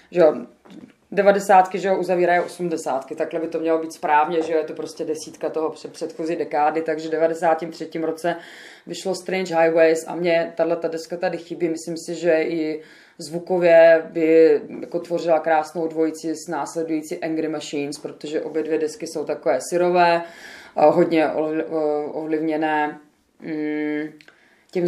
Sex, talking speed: female, 145 wpm